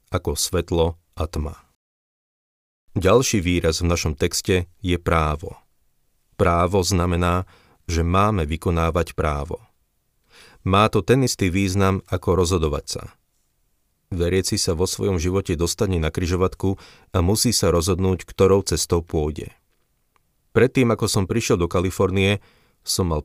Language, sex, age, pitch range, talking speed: Slovak, male, 40-59, 85-100 Hz, 125 wpm